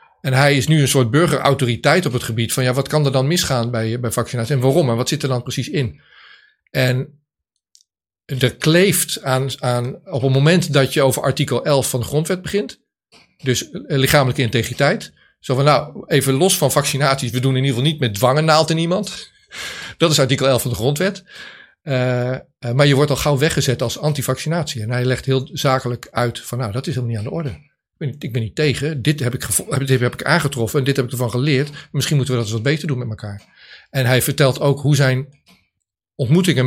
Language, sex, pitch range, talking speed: Dutch, male, 125-150 Hz, 215 wpm